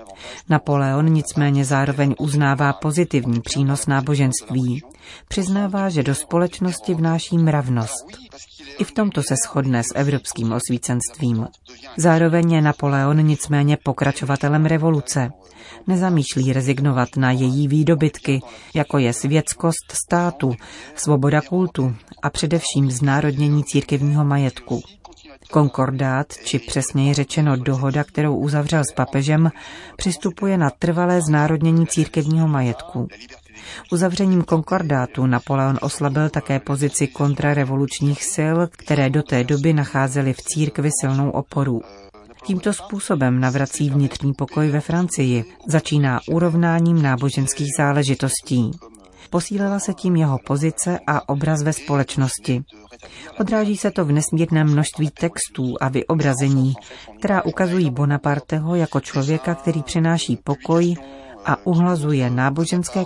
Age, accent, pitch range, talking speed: 40-59, native, 135-165 Hz, 110 wpm